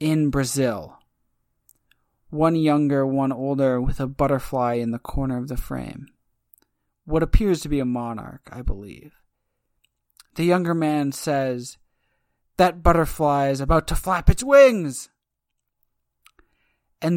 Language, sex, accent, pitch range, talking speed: English, male, American, 130-210 Hz, 125 wpm